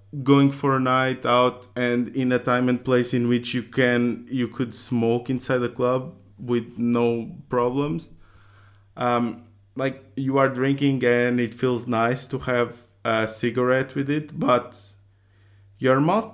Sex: male